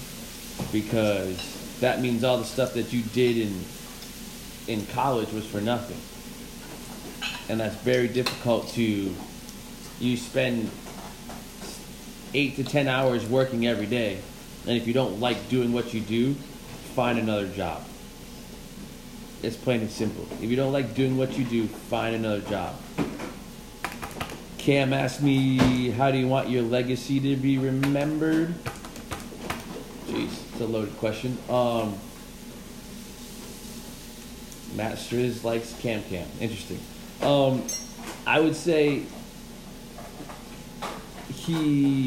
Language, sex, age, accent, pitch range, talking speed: English, male, 30-49, American, 115-135 Hz, 120 wpm